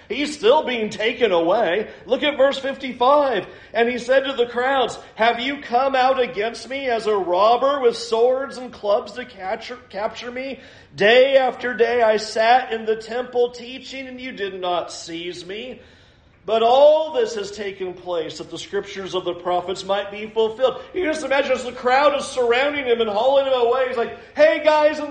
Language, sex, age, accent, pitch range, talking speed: English, male, 40-59, American, 185-260 Hz, 190 wpm